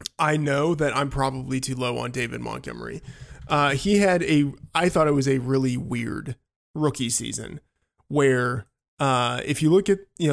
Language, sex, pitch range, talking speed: English, male, 130-155 Hz, 175 wpm